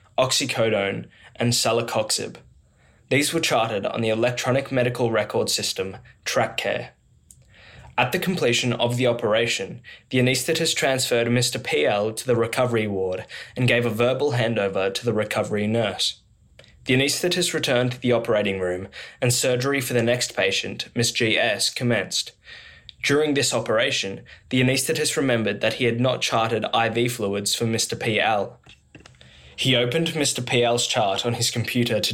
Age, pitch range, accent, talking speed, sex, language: 20-39, 110-130 Hz, Australian, 150 wpm, male, English